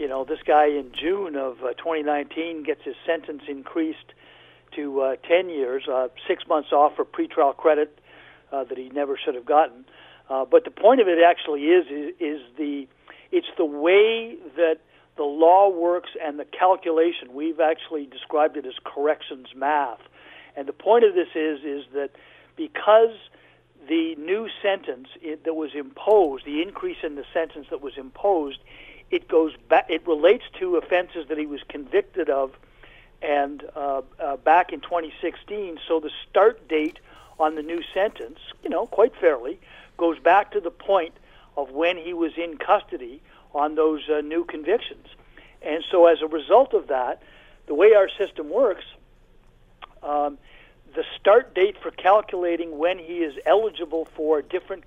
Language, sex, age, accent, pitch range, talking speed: English, male, 60-79, American, 150-210 Hz, 170 wpm